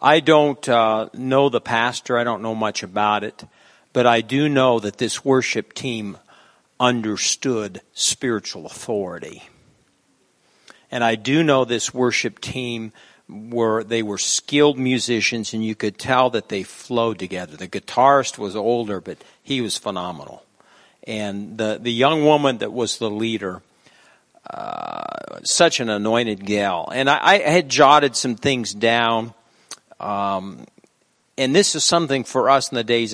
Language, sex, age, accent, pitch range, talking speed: English, male, 50-69, American, 115-140 Hz, 150 wpm